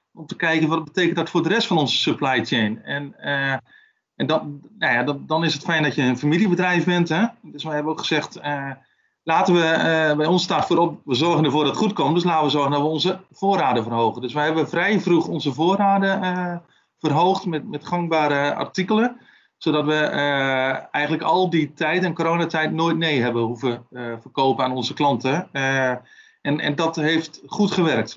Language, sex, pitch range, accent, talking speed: Dutch, male, 140-175 Hz, Dutch, 195 wpm